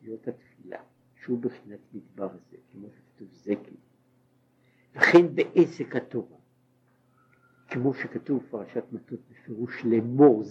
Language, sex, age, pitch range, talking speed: Hebrew, male, 60-79, 120-130 Hz, 85 wpm